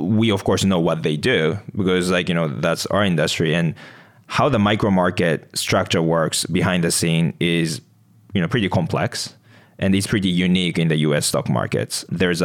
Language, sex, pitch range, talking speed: English, male, 85-105 Hz, 195 wpm